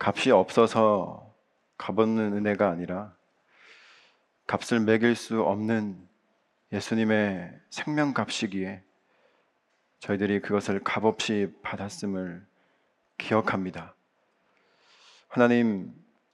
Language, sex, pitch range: Korean, male, 105-120 Hz